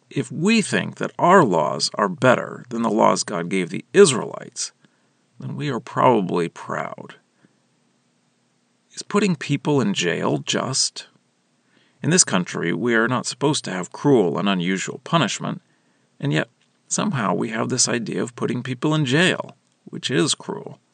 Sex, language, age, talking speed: male, English, 40-59, 155 wpm